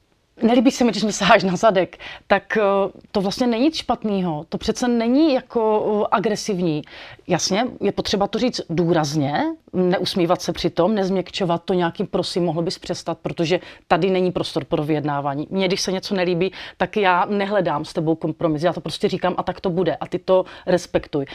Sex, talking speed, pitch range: female, 180 wpm, 175-215 Hz